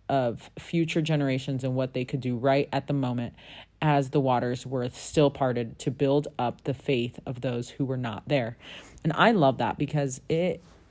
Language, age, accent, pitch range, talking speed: English, 30-49, American, 110-145 Hz, 195 wpm